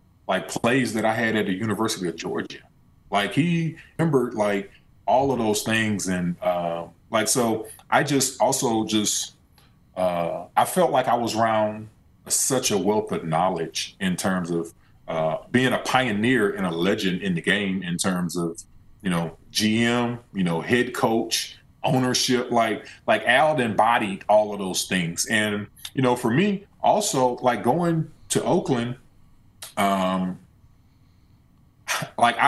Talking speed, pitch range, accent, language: 150 wpm, 100-135 Hz, American, English